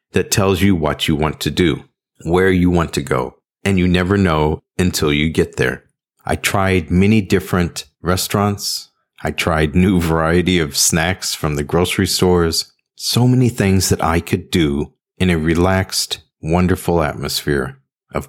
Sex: male